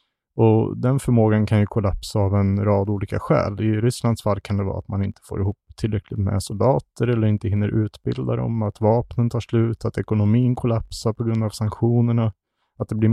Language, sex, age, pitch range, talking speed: Swedish, male, 30-49, 105-115 Hz, 200 wpm